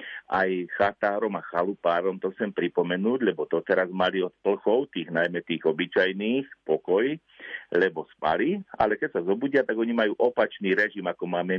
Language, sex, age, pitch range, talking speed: Slovak, male, 50-69, 90-115 Hz, 160 wpm